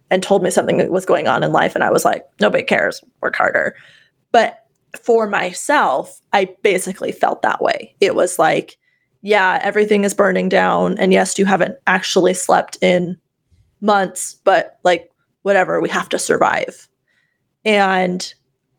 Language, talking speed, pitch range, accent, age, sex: English, 160 wpm, 180-215 Hz, American, 20-39, female